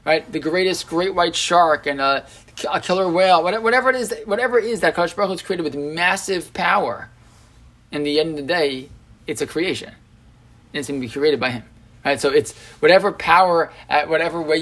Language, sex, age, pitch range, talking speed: English, male, 20-39, 130-175 Hz, 205 wpm